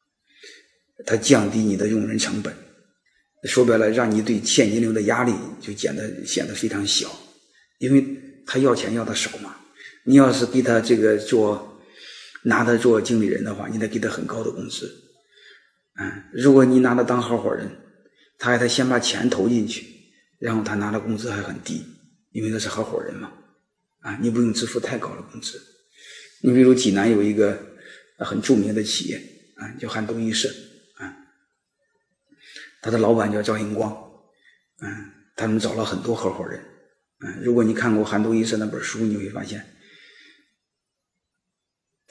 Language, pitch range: Chinese, 105-120 Hz